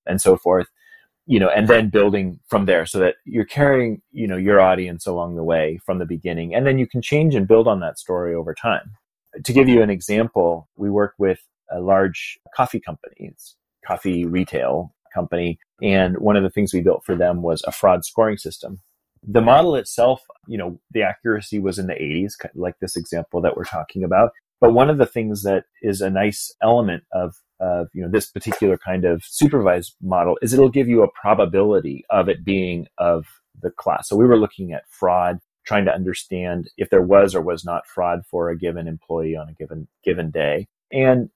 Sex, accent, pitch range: male, American, 85-110 Hz